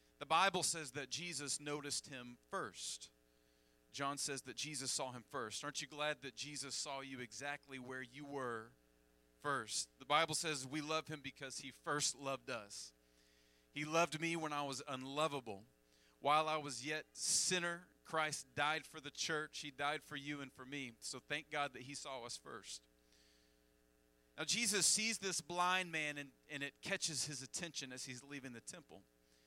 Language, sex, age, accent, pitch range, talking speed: English, male, 40-59, American, 120-165 Hz, 175 wpm